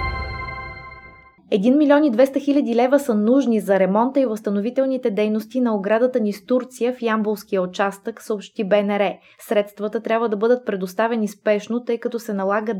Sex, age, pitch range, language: female, 20-39, 200-245 Hz, Bulgarian